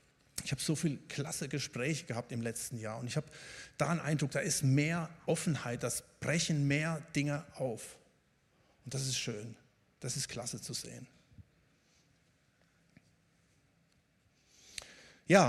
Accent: German